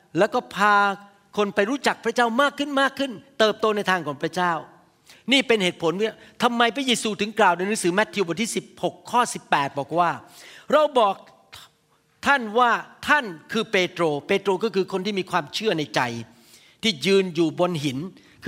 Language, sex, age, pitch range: Thai, male, 60-79, 175-225 Hz